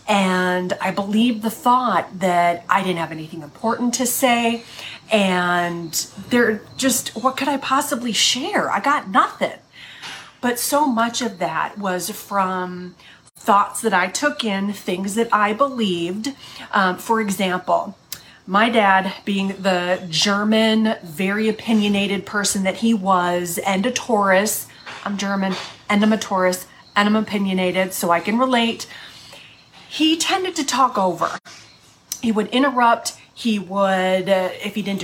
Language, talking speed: English, 145 wpm